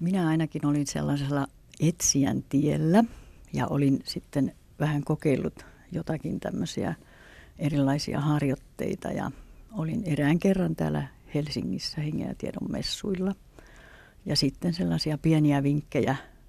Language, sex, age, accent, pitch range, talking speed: Finnish, female, 60-79, native, 140-175 Hz, 100 wpm